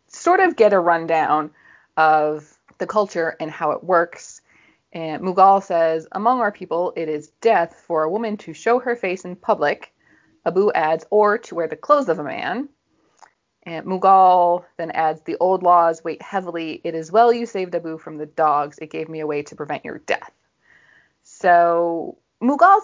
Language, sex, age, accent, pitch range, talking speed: English, female, 30-49, American, 160-215 Hz, 180 wpm